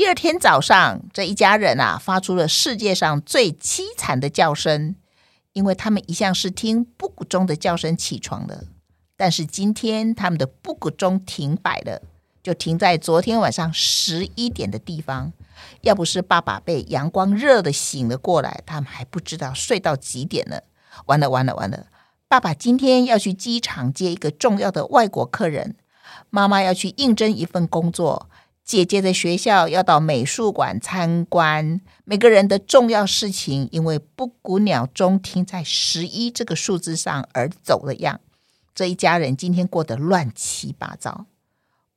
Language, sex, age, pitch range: Chinese, female, 50-69, 155-200 Hz